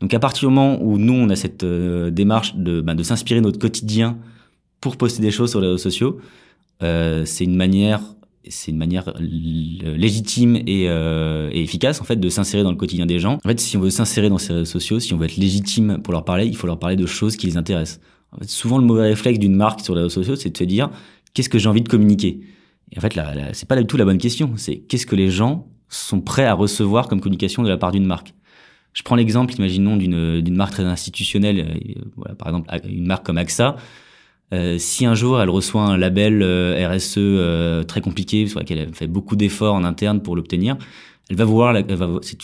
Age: 20-39